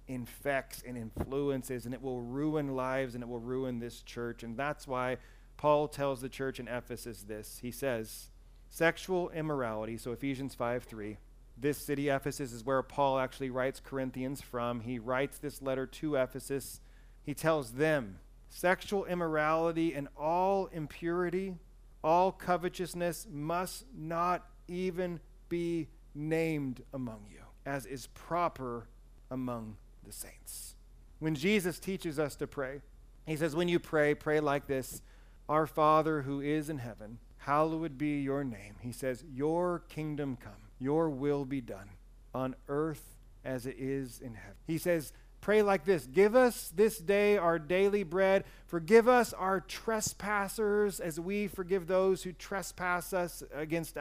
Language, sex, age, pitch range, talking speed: English, male, 40-59, 130-175 Hz, 150 wpm